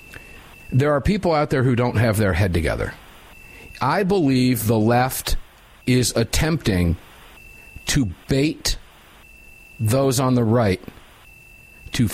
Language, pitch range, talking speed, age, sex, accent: English, 100-125 Hz, 120 wpm, 50-69, male, American